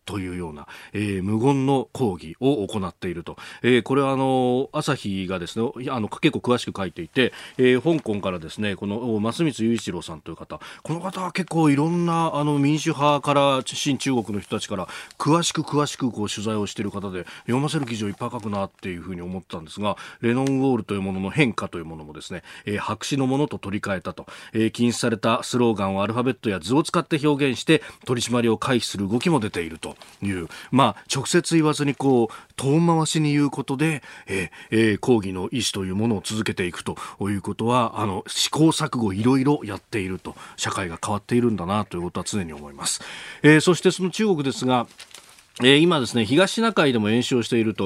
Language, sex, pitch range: Japanese, male, 105-150 Hz